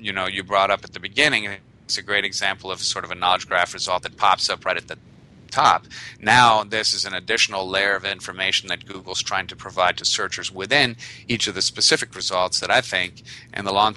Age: 40-59